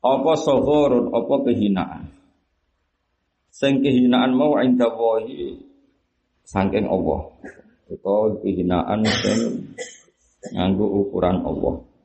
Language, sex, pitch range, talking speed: Indonesian, male, 85-110 Hz, 90 wpm